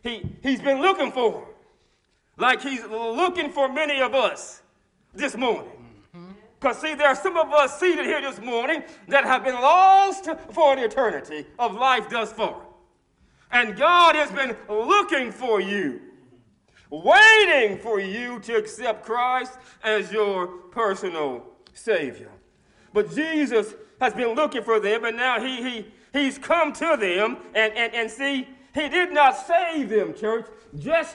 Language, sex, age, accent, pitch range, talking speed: English, male, 40-59, American, 225-315 Hz, 150 wpm